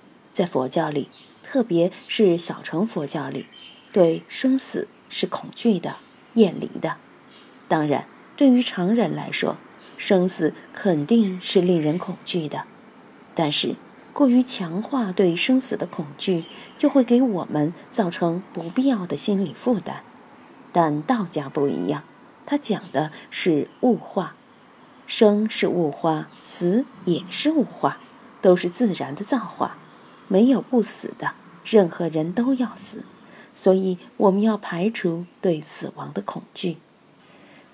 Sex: female